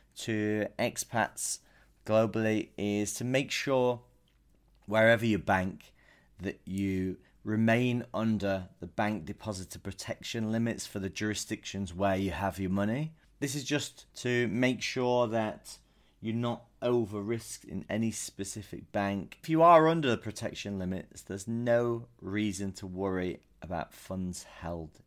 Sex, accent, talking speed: male, British, 135 wpm